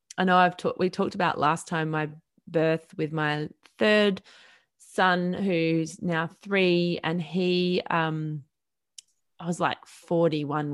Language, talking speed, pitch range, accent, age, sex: English, 140 wpm, 160-190 Hz, Australian, 20-39, female